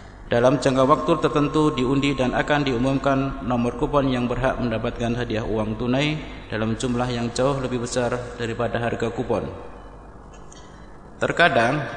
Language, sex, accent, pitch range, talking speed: Indonesian, male, native, 115-135 Hz, 130 wpm